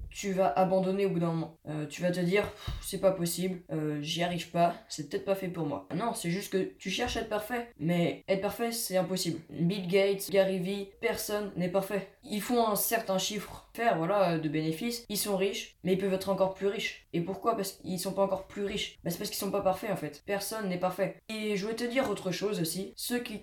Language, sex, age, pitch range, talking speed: French, female, 20-39, 170-200 Hz, 245 wpm